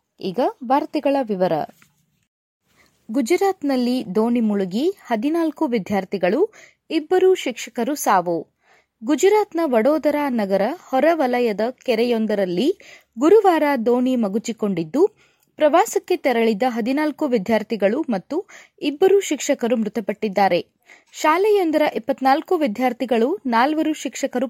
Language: Kannada